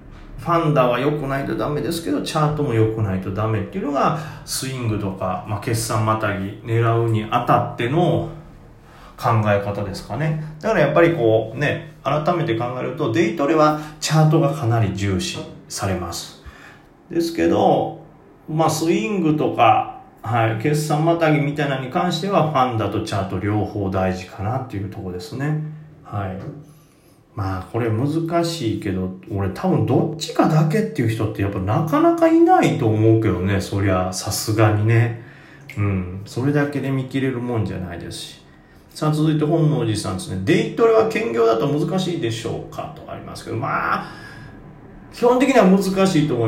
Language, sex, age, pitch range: Japanese, male, 40-59, 110-165 Hz